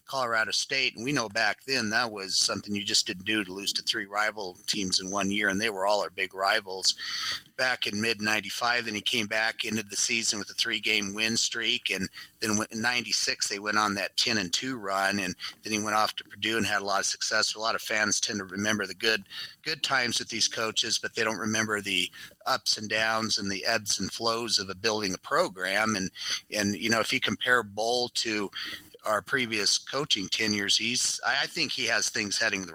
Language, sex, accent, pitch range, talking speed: English, male, American, 100-115 Hz, 225 wpm